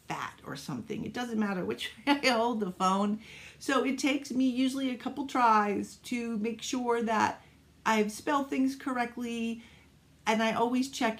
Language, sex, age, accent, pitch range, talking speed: English, female, 50-69, American, 205-245 Hz, 170 wpm